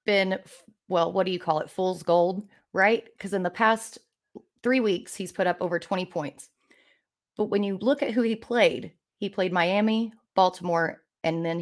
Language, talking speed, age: English, 185 wpm, 30-49